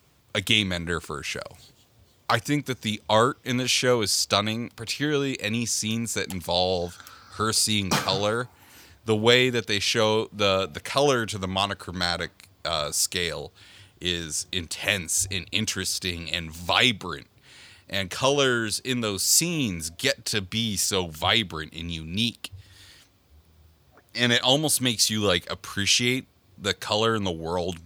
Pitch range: 90-115 Hz